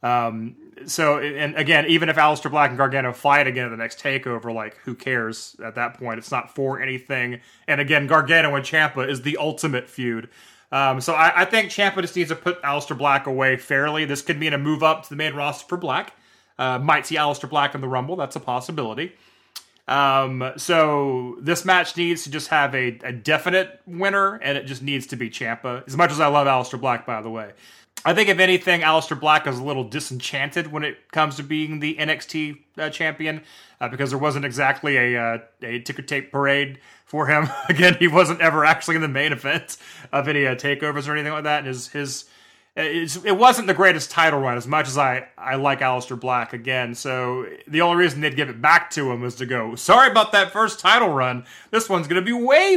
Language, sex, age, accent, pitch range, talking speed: English, male, 30-49, American, 130-165 Hz, 220 wpm